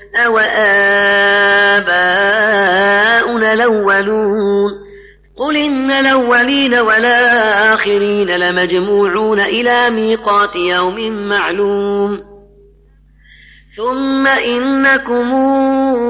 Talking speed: 50 wpm